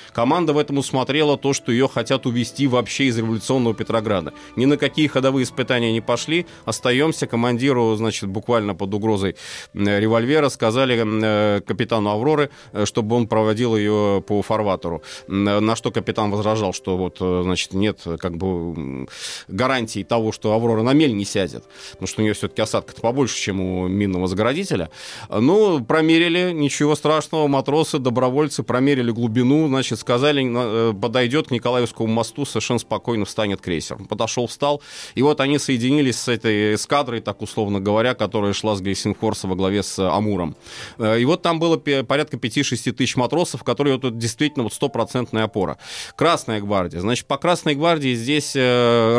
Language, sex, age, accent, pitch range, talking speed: Russian, male, 30-49, native, 105-135 Hz, 150 wpm